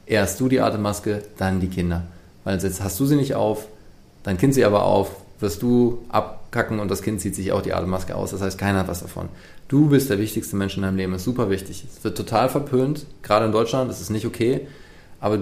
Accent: German